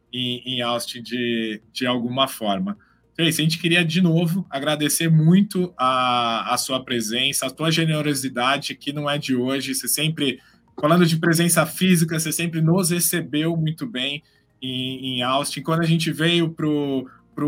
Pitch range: 125-150 Hz